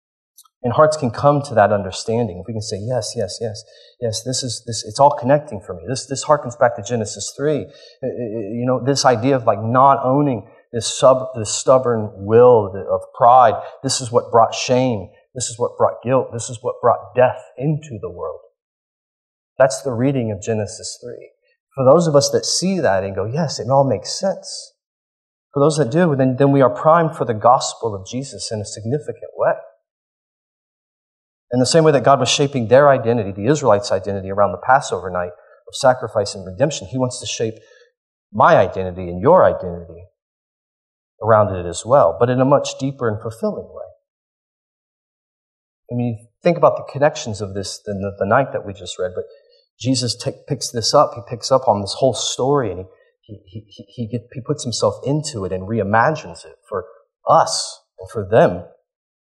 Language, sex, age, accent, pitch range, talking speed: English, male, 30-49, American, 110-145 Hz, 195 wpm